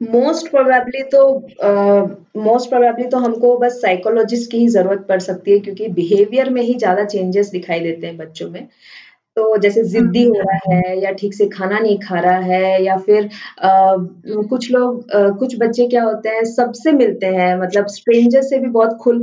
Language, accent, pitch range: Hindi, native, 195-245 Hz